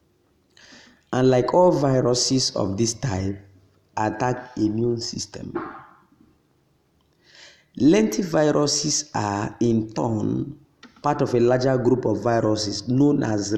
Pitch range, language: 110-135 Hz, English